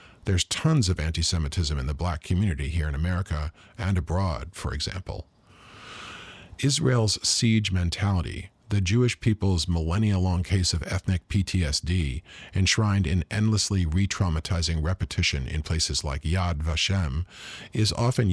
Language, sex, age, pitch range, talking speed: English, male, 40-59, 85-105 Hz, 125 wpm